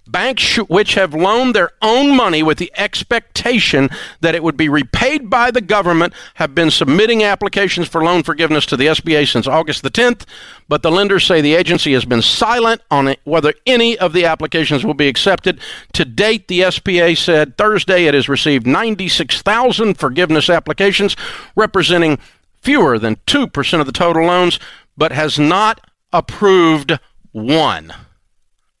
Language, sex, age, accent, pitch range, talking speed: English, male, 50-69, American, 130-185 Hz, 155 wpm